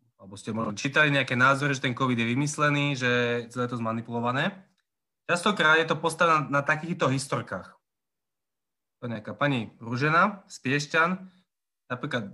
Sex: male